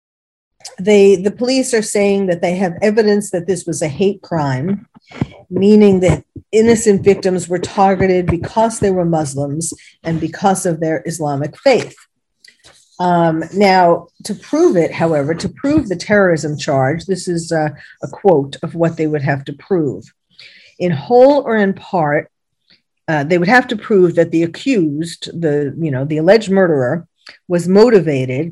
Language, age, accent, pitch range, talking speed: English, 50-69, American, 165-205 Hz, 160 wpm